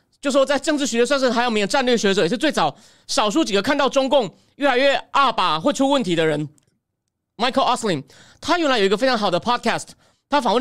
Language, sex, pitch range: Chinese, male, 185-270 Hz